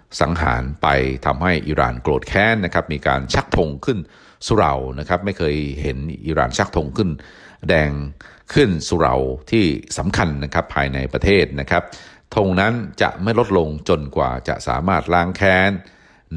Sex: male